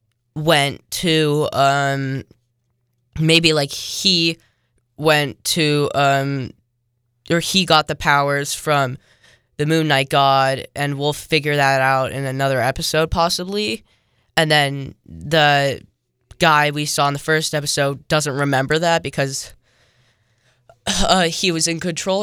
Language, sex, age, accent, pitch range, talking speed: English, female, 10-29, American, 130-165 Hz, 125 wpm